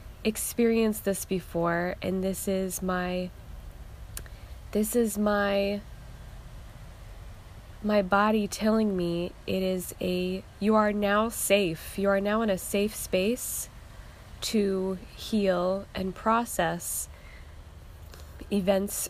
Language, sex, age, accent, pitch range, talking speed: English, female, 20-39, American, 165-205 Hz, 105 wpm